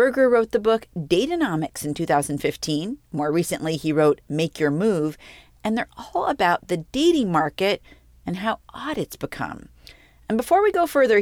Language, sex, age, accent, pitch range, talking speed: English, female, 40-59, American, 160-240 Hz, 165 wpm